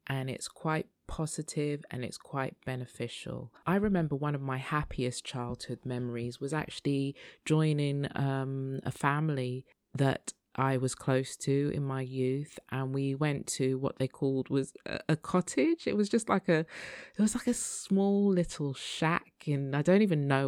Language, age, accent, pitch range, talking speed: English, 20-39, British, 130-155 Hz, 170 wpm